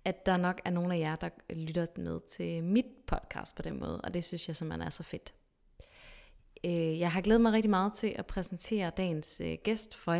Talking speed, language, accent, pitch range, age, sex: 210 wpm, English, Danish, 165-200 Hz, 20-39, female